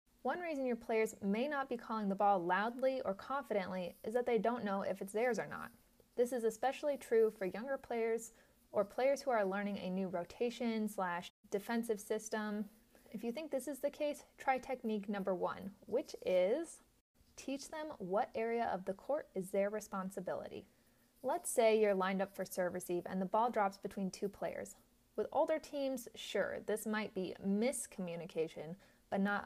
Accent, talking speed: American, 180 wpm